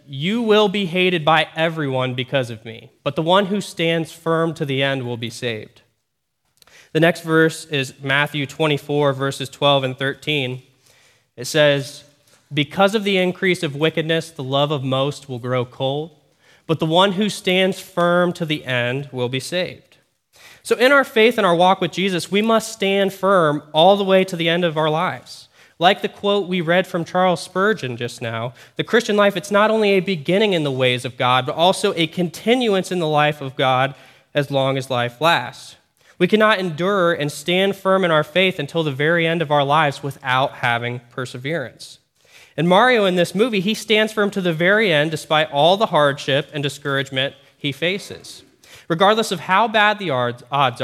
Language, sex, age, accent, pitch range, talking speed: English, male, 20-39, American, 140-190 Hz, 190 wpm